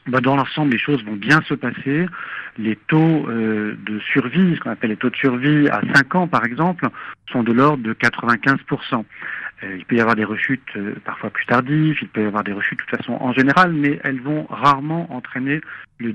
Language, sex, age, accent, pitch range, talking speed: Spanish, male, 50-69, French, 120-150 Hz, 215 wpm